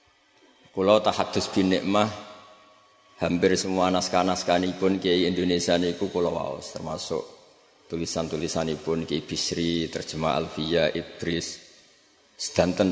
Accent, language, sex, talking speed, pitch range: native, Indonesian, male, 115 wpm, 95-110 Hz